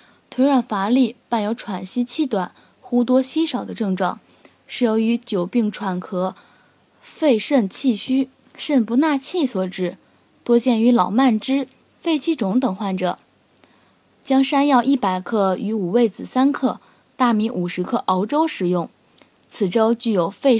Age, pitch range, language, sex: 10-29, 200-265 Hz, Chinese, female